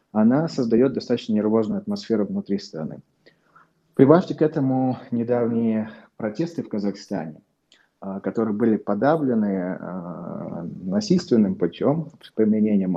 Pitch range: 105-135 Hz